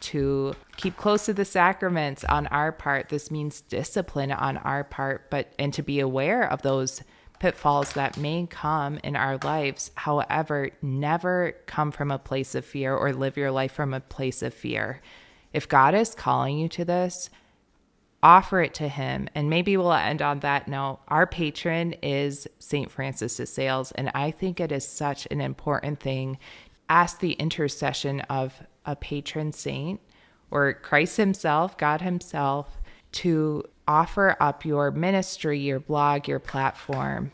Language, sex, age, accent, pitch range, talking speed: English, female, 20-39, American, 140-165 Hz, 160 wpm